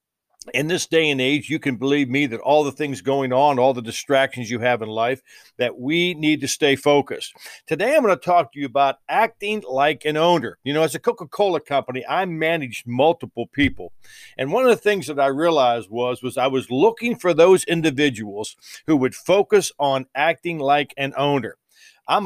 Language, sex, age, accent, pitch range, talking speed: English, male, 50-69, American, 130-170 Hz, 200 wpm